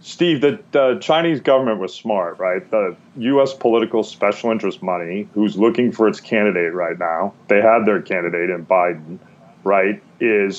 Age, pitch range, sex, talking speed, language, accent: 30-49, 100-120 Hz, male, 165 wpm, English, American